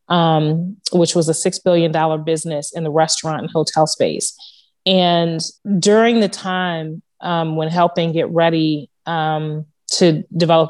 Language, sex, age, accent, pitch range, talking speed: English, female, 20-39, American, 160-185 Hz, 140 wpm